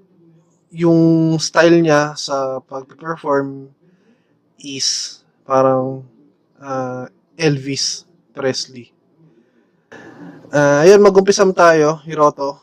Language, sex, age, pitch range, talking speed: Filipino, male, 20-39, 135-170 Hz, 75 wpm